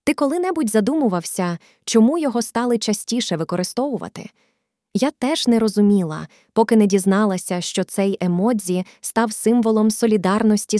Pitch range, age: 185-230 Hz, 20-39